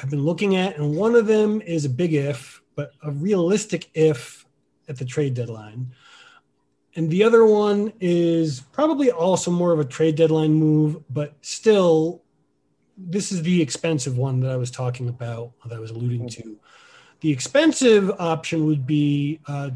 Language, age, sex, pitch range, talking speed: English, 30-49, male, 130-165 Hz, 165 wpm